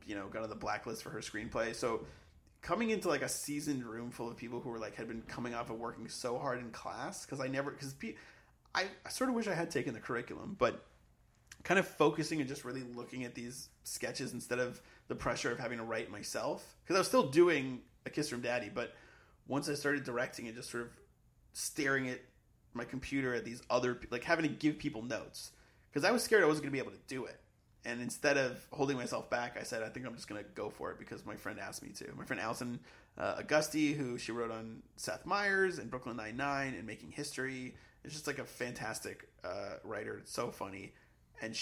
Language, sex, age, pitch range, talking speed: English, male, 30-49, 115-145 Hz, 235 wpm